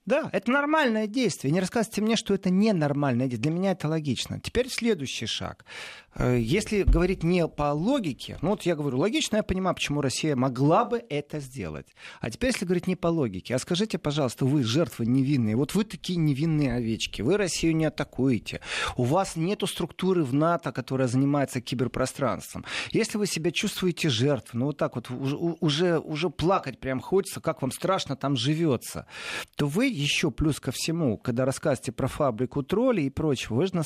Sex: male